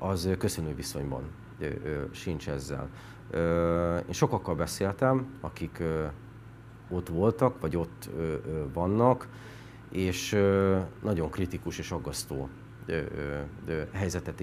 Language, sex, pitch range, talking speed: Hungarian, male, 85-110 Hz, 85 wpm